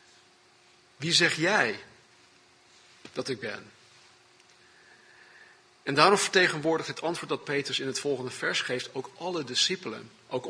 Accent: Dutch